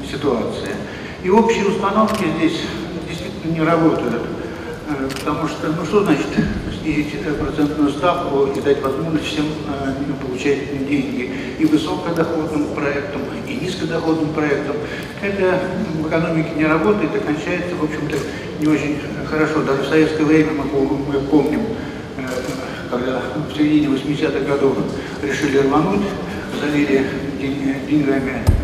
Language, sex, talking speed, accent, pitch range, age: Russian, male, 110 wpm, native, 140-175 Hz, 60-79